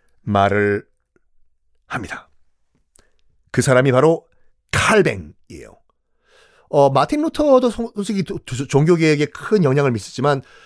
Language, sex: Korean, male